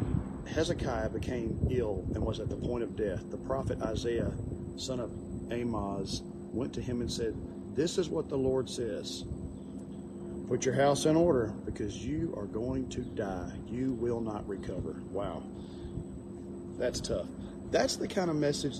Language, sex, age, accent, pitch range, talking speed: English, male, 40-59, American, 105-145 Hz, 160 wpm